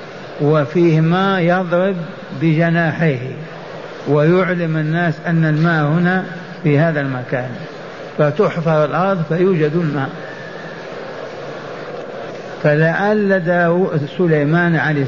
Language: Arabic